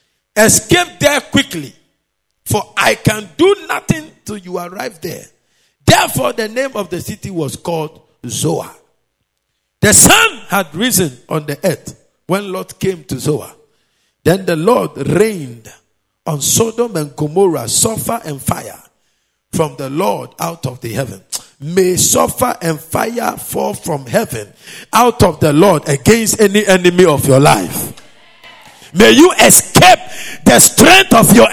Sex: male